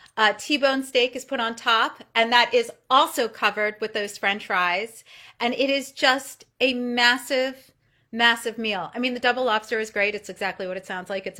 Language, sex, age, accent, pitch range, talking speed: English, female, 40-59, American, 210-260 Hz, 200 wpm